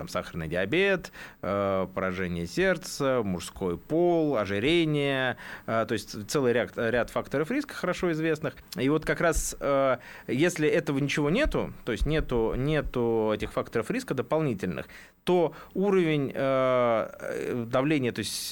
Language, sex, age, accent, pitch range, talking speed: Russian, male, 30-49, native, 105-145 Hz, 115 wpm